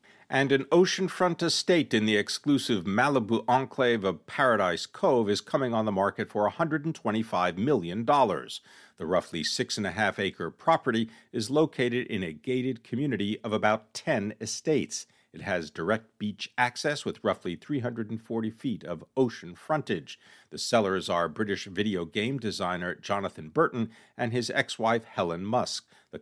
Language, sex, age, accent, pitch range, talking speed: English, male, 50-69, American, 105-135 Hz, 150 wpm